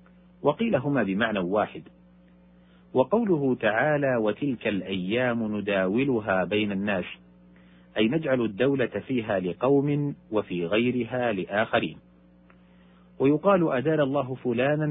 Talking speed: 95 wpm